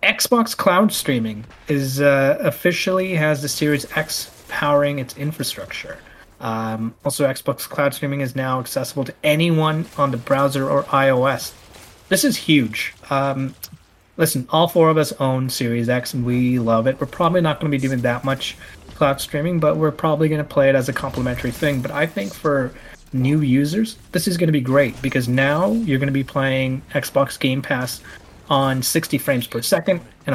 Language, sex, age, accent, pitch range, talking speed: English, male, 30-49, American, 125-155 Hz, 185 wpm